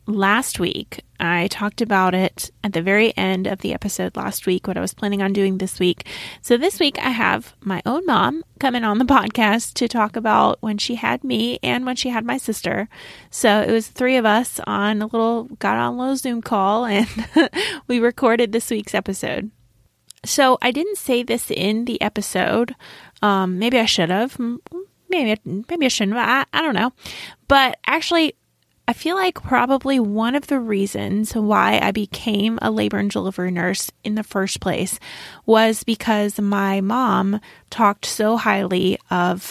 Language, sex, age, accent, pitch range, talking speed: English, female, 20-39, American, 190-240 Hz, 180 wpm